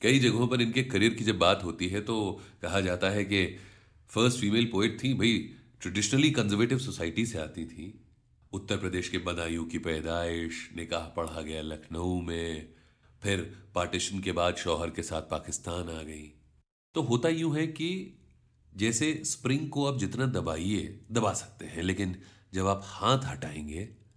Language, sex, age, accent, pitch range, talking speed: Hindi, male, 40-59, native, 85-115 Hz, 165 wpm